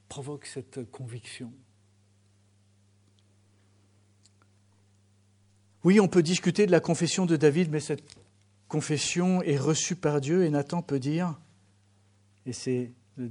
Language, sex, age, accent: French, male, 50-69, French